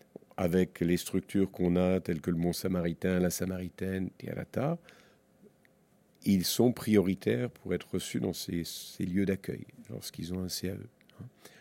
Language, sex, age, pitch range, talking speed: French, male, 50-69, 90-110 Hz, 160 wpm